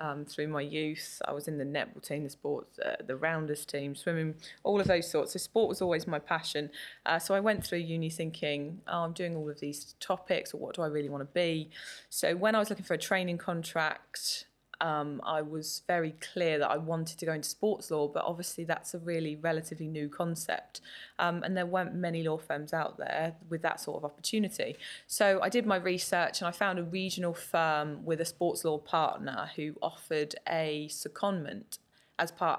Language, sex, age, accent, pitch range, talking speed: English, female, 20-39, British, 155-185 Hz, 210 wpm